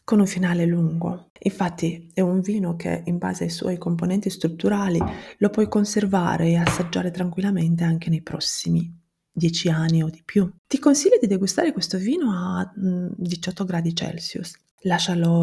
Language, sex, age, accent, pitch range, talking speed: Italian, female, 20-39, native, 165-205 Hz, 160 wpm